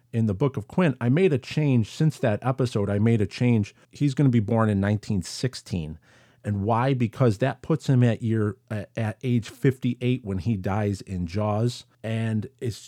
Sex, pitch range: male, 100-125 Hz